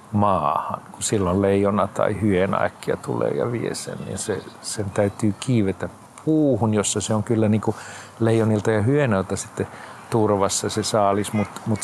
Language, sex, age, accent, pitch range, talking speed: Finnish, male, 50-69, native, 95-125 Hz, 160 wpm